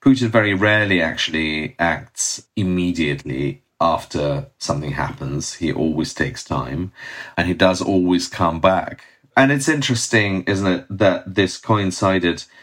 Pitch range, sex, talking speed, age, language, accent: 80-100 Hz, male, 130 wpm, 40-59, English, British